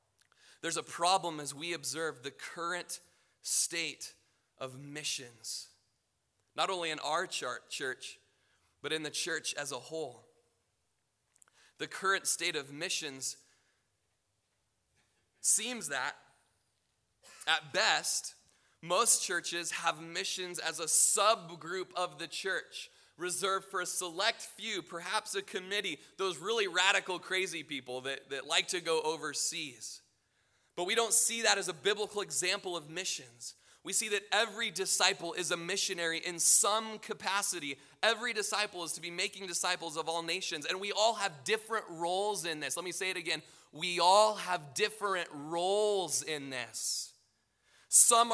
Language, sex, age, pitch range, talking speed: English, male, 20-39, 150-195 Hz, 140 wpm